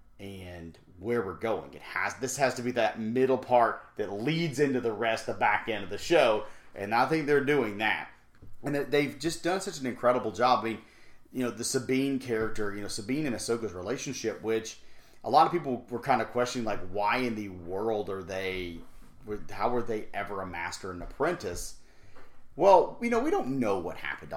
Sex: male